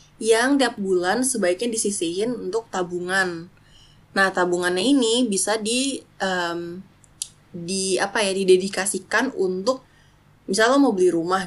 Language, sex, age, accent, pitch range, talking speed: Indonesian, female, 20-39, native, 180-220 Hz, 120 wpm